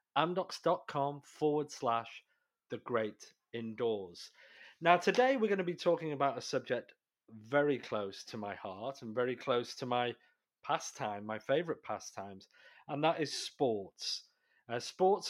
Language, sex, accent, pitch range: English, male, British, 115-150 Hz